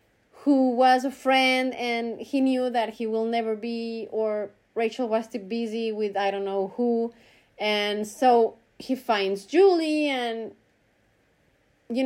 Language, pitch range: English, 220-290 Hz